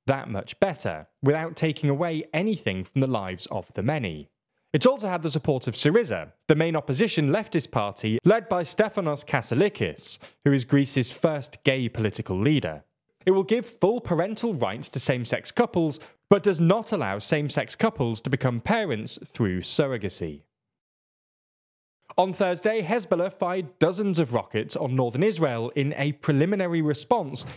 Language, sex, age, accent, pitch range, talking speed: English, male, 20-39, British, 115-170 Hz, 150 wpm